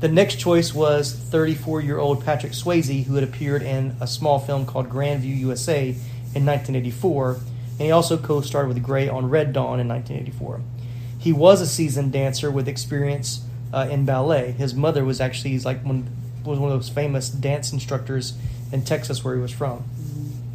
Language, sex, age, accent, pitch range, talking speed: English, male, 30-49, American, 120-140 Hz, 170 wpm